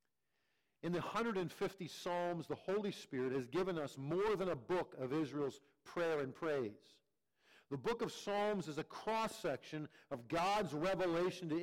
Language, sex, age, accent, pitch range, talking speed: English, male, 50-69, American, 140-185 Hz, 155 wpm